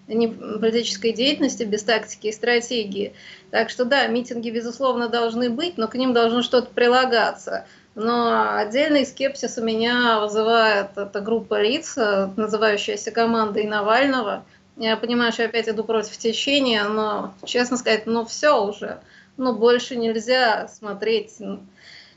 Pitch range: 220-255 Hz